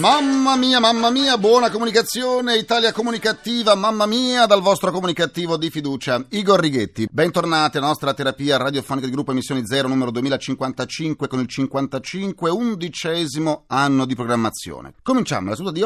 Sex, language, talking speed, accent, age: male, Italian, 150 wpm, native, 40-59